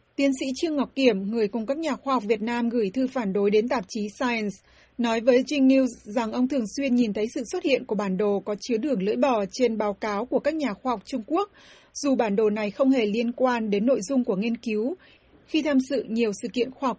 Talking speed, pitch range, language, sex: 260 wpm, 220-270 Hz, Vietnamese, female